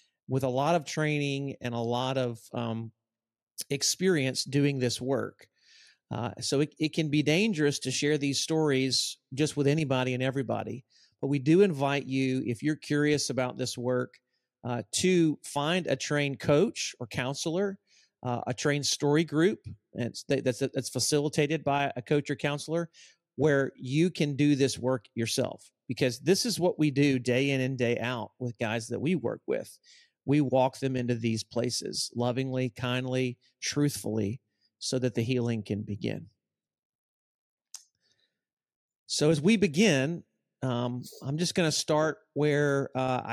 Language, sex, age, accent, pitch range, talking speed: English, male, 40-59, American, 125-150 Hz, 160 wpm